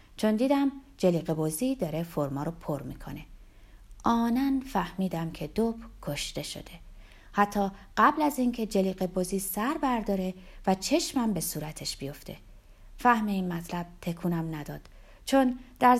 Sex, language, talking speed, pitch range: female, Persian, 130 wpm, 170-245 Hz